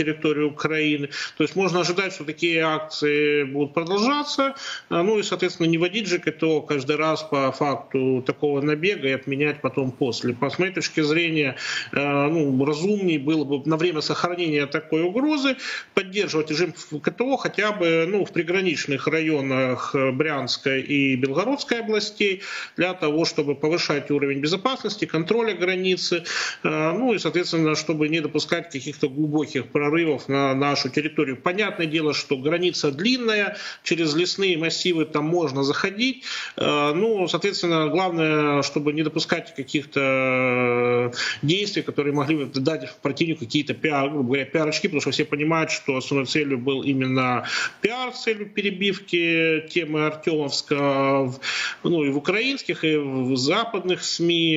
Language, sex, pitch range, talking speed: Russian, male, 145-180 Hz, 135 wpm